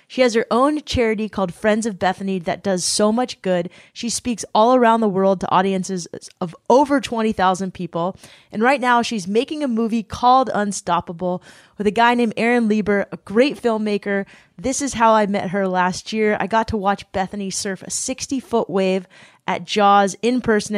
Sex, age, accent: female, 20-39, American